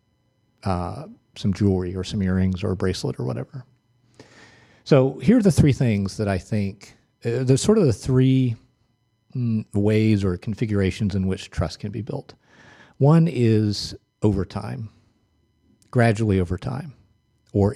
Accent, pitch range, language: American, 95-120 Hz, English